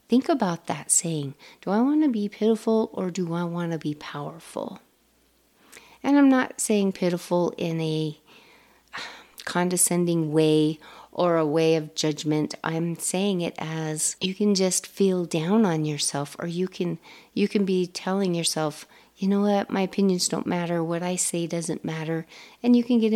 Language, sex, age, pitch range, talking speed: English, female, 40-59, 160-205 Hz, 170 wpm